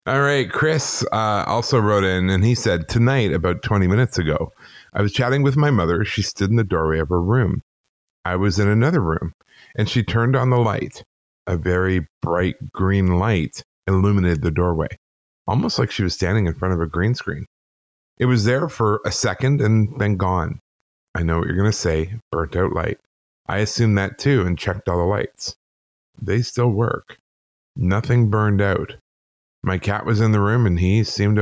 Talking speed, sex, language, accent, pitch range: 195 wpm, male, English, American, 90-115 Hz